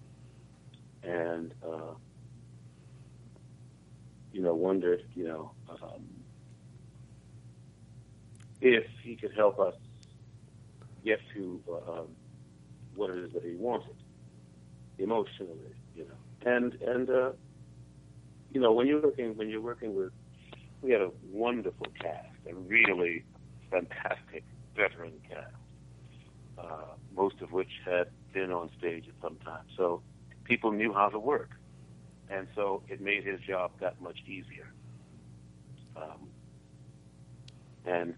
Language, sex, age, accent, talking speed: English, male, 50-69, American, 120 wpm